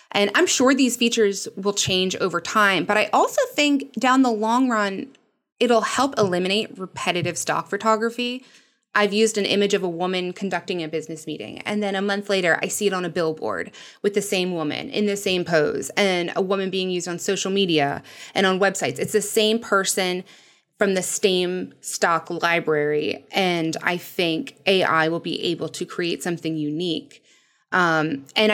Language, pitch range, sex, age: English, 175-220 Hz, female, 20-39